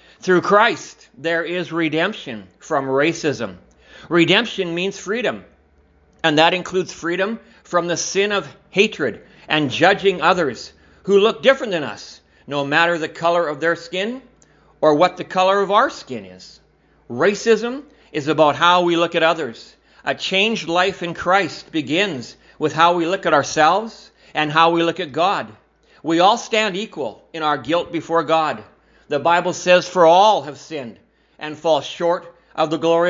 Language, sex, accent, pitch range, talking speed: English, male, American, 155-190 Hz, 165 wpm